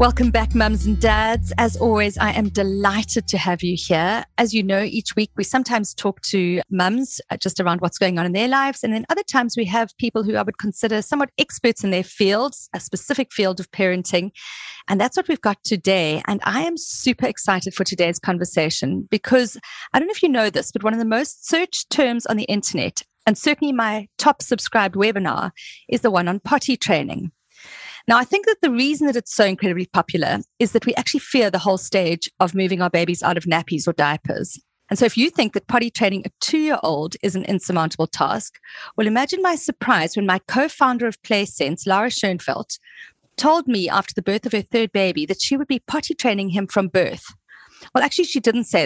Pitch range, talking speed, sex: 190-250 Hz, 215 wpm, female